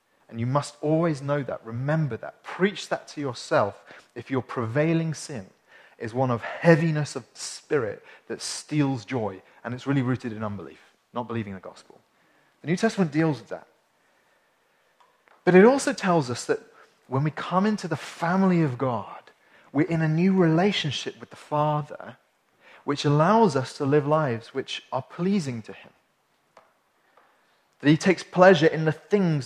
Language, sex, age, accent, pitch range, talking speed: English, male, 30-49, British, 125-170 Hz, 165 wpm